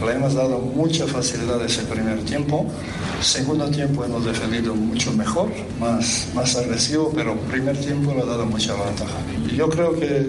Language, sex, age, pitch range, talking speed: Spanish, male, 60-79, 110-145 Hz, 165 wpm